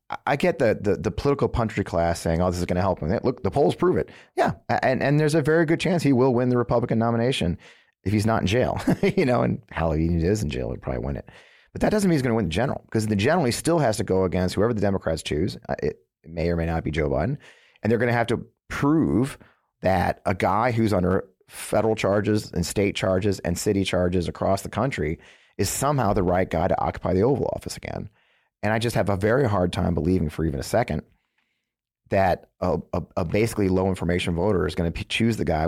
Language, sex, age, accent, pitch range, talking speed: English, male, 30-49, American, 85-110 Hz, 245 wpm